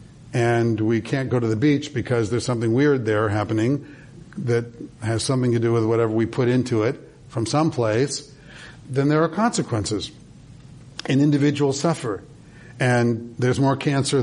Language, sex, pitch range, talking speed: English, male, 115-135 Hz, 160 wpm